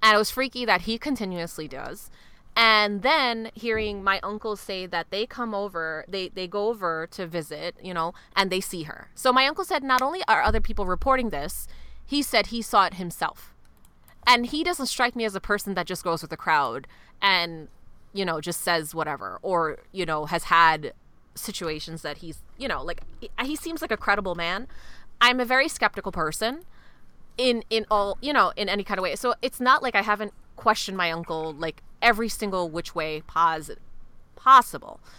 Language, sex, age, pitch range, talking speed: English, female, 20-39, 165-215 Hz, 195 wpm